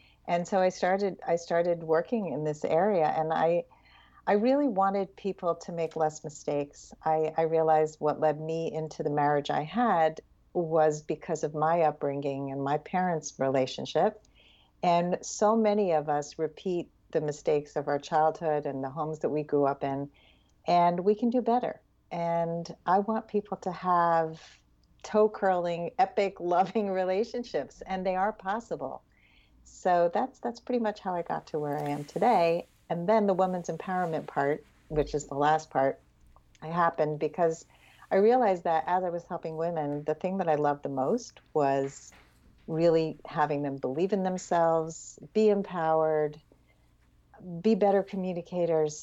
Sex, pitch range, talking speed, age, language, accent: female, 150-185 Hz, 160 wpm, 50-69, English, American